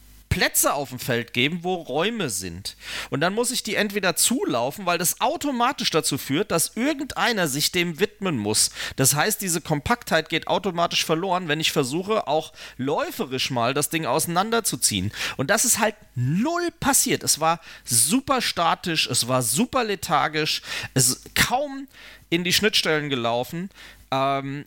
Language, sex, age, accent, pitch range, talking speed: German, male, 40-59, German, 150-225 Hz, 155 wpm